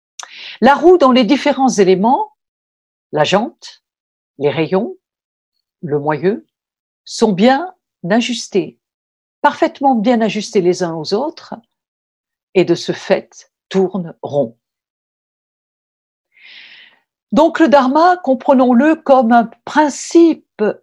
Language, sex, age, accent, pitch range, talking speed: French, female, 60-79, French, 195-290 Hz, 100 wpm